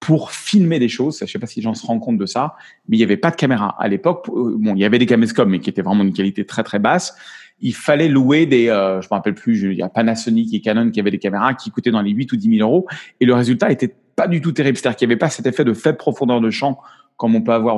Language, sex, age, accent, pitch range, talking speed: English, male, 30-49, French, 115-165 Hz, 310 wpm